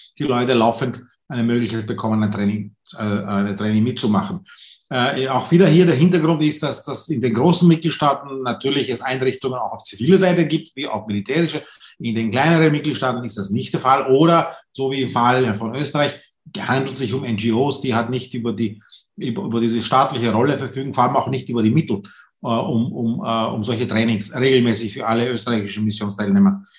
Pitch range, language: 115-145 Hz, English